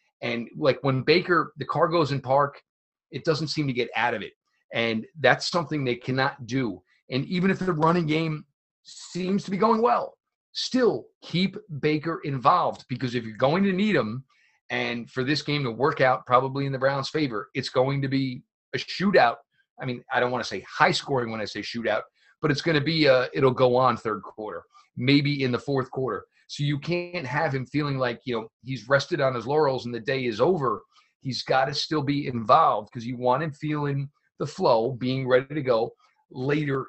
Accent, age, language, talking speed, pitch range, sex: American, 40-59, English, 210 wpm, 120-150 Hz, male